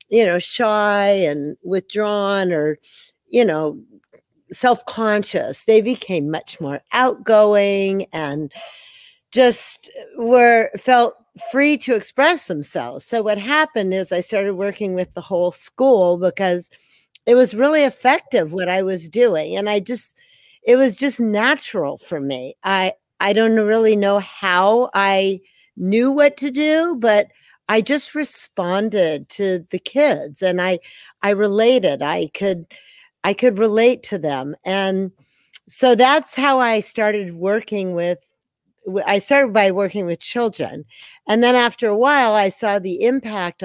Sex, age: female, 50-69